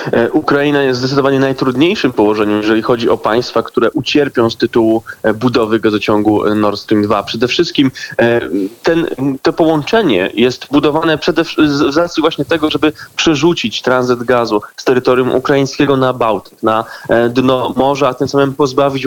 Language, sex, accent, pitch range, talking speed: Polish, male, native, 120-145 Hz, 145 wpm